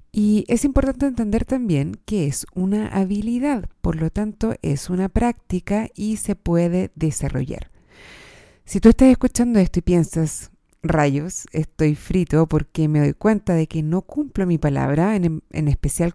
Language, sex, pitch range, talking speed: Spanish, female, 165-220 Hz, 155 wpm